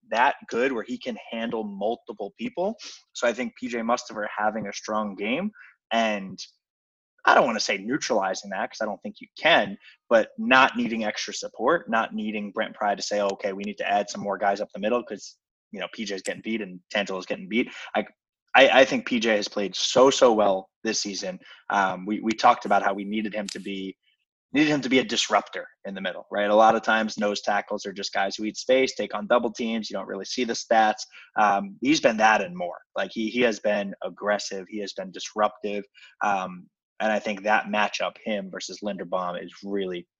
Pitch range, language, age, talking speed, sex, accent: 100-120 Hz, English, 20-39, 215 wpm, male, American